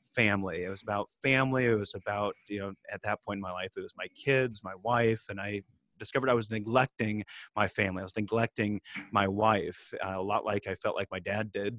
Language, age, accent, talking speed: English, 30-49, American, 225 wpm